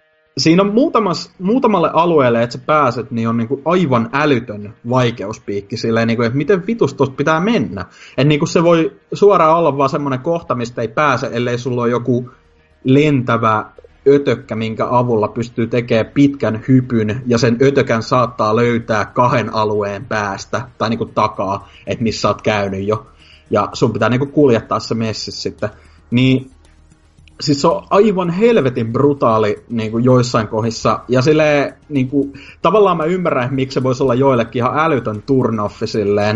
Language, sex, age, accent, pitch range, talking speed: Finnish, male, 30-49, native, 110-140 Hz, 160 wpm